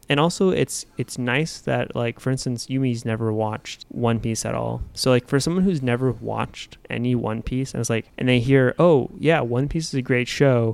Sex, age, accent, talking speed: male, 20-39, American, 225 wpm